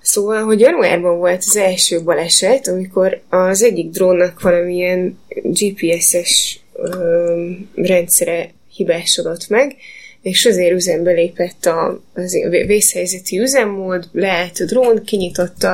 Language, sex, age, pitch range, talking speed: Hungarian, female, 20-39, 175-200 Hz, 115 wpm